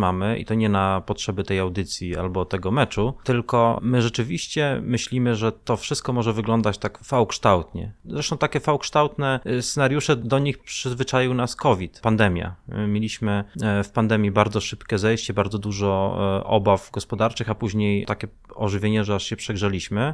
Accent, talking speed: native, 150 wpm